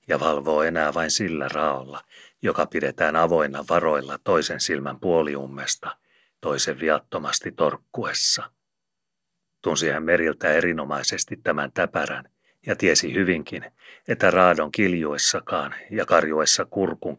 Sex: male